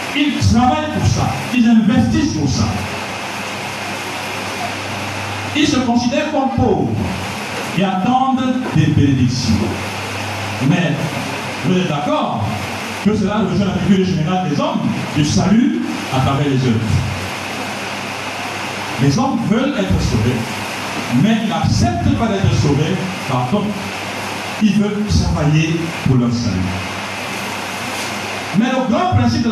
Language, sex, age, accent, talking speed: French, male, 60-79, French, 120 wpm